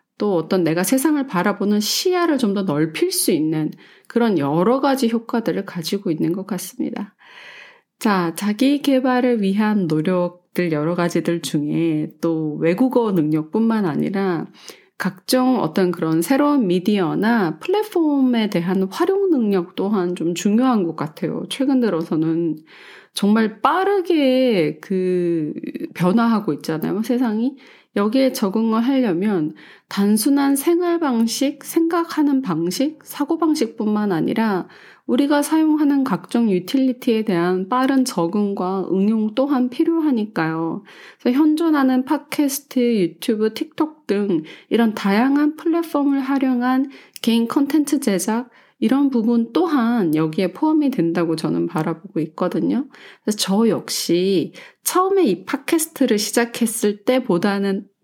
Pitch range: 185-275 Hz